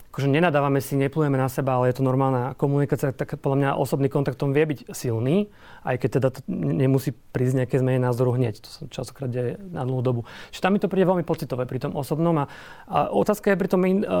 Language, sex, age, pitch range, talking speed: Slovak, male, 40-59, 130-150 Hz, 220 wpm